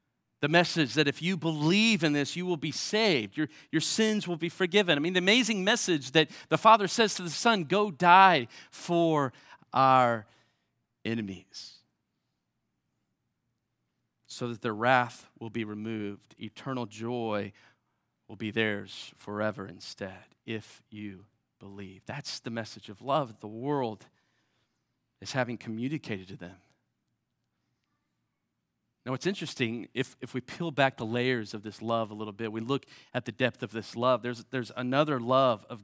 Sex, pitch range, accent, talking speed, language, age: male, 110-150 Hz, American, 155 wpm, English, 40-59